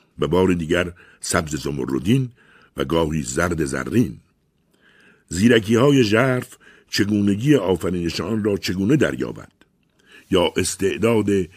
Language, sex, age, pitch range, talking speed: Persian, male, 60-79, 80-100 Hz, 100 wpm